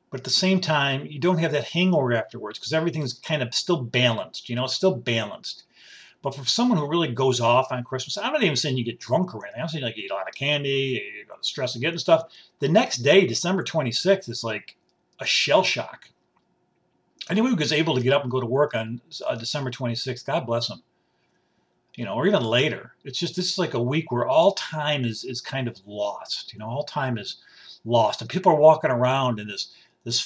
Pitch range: 125-165 Hz